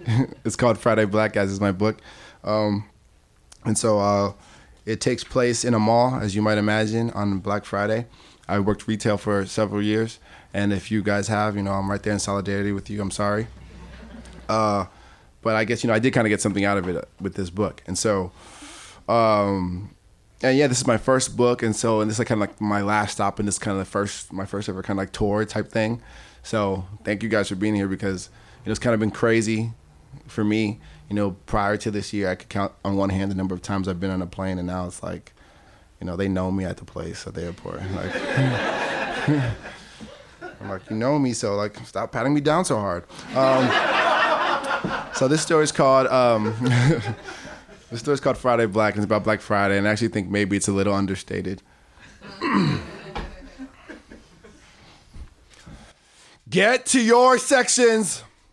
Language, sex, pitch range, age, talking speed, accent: English, male, 100-115 Hz, 20-39, 205 wpm, American